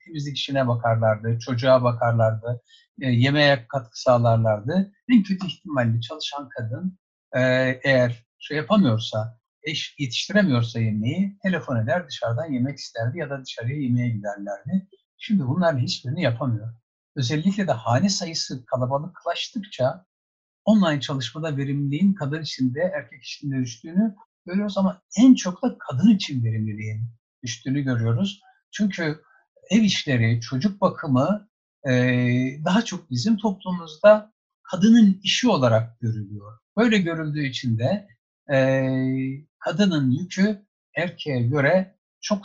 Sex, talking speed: male, 110 wpm